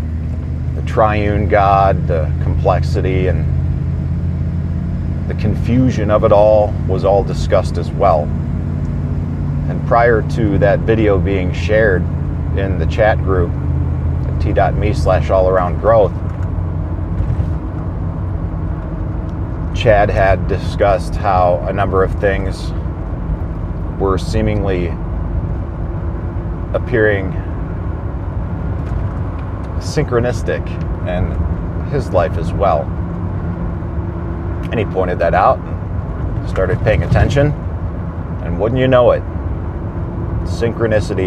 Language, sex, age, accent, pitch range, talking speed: English, male, 40-59, American, 85-95 Hz, 90 wpm